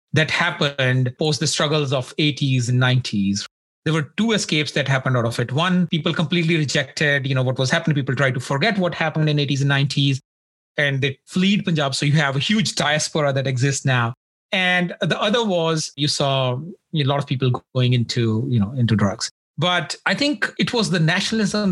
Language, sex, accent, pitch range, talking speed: English, male, Indian, 135-185 Hz, 205 wpm